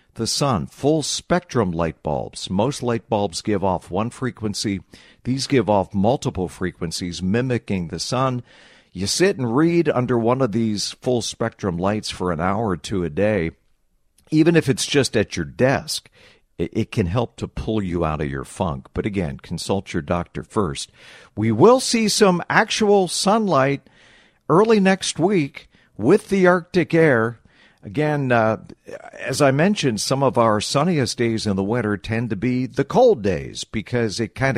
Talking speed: 165 wpm